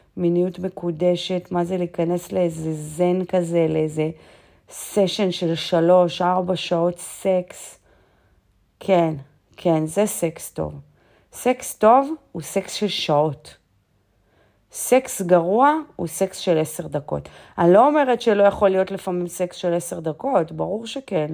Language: Hebrew